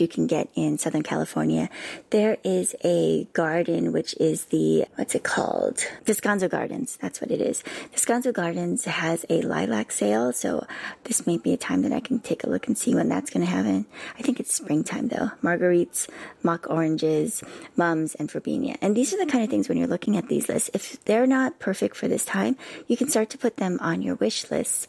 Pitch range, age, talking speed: 150-220 Hz, 30-49, 210 wpm